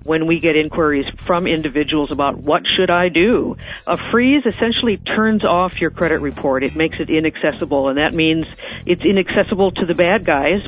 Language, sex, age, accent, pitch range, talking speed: English, female, 50-69, American, 155-190 Hz, 180 wpm